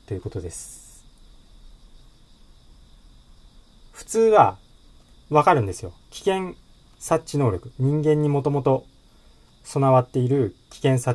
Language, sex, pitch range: Japanese, male, 95-135 Hz